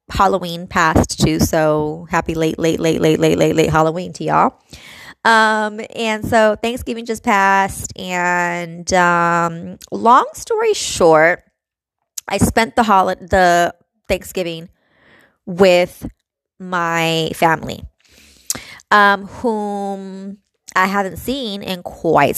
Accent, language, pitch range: American, English, 165-215 Hz